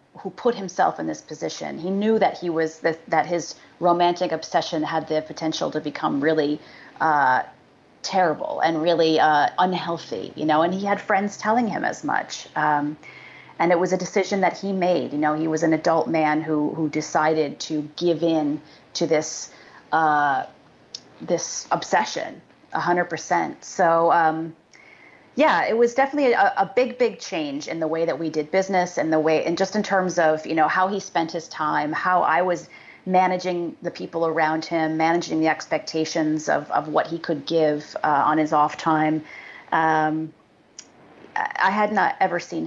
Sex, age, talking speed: female, 30-49, 180 wpm